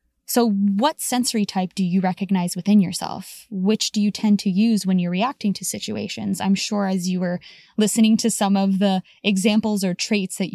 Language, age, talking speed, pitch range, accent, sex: English, 10-29, 195 wpm, 185-220 Hz, American, female